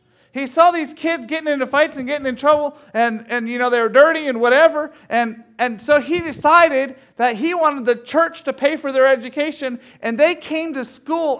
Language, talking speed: English, 210 wpm